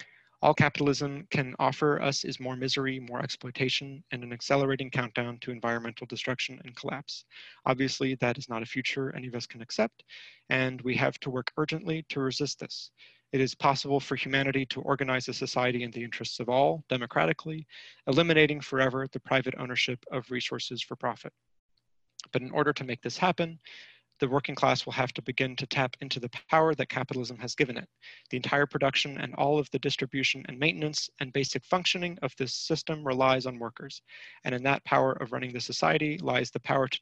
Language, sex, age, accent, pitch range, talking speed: English, male, 30-49, American, 125-140 Hz, 190 wpm